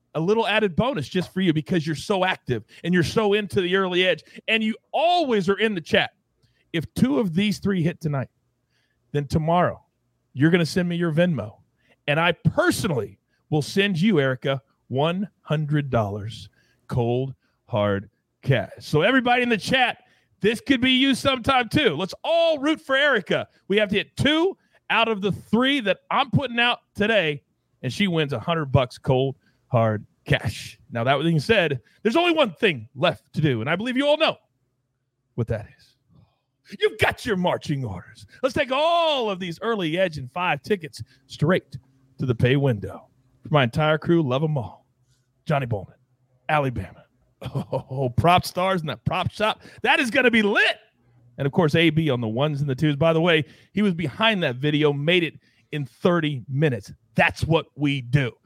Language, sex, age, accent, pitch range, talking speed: English, male, 40-59, American, 130-205 Hz, 185 wpm